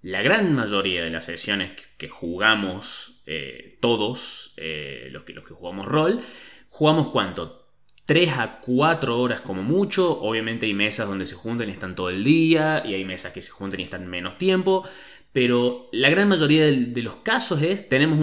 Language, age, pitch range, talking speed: Spanish, 20-39, 120-170 Hz, 185 wpm